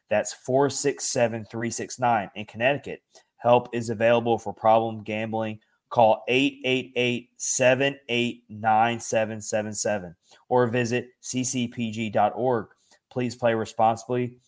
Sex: male